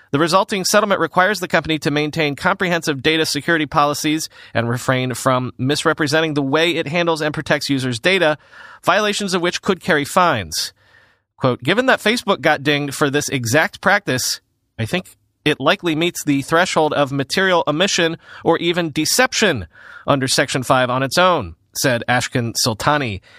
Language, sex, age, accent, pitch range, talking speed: English, male, 30-49, American, 125-170 Hz, 160 wpm